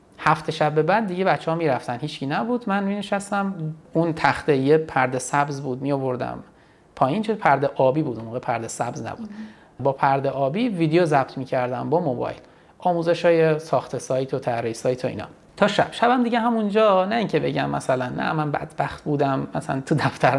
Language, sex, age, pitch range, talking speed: Persian, male, 30-49, 135-200 Hz, 175 wpm